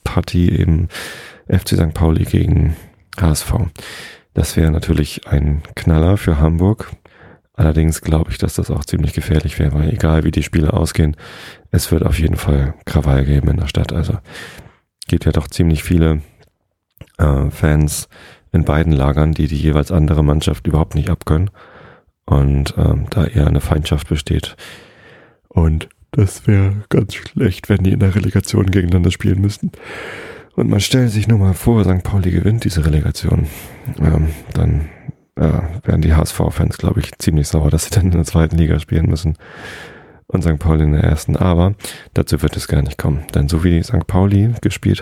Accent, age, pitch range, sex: German, 30-49, 75-95 Hz, male